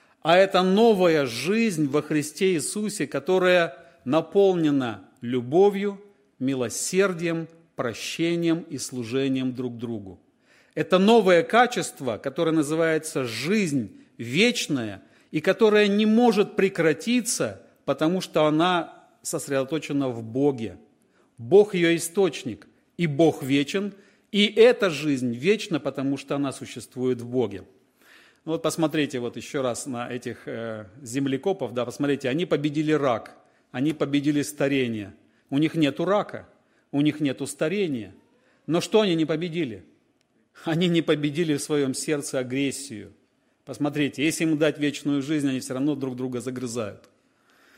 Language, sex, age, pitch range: Russian, male, 40-59, 135-180 Hz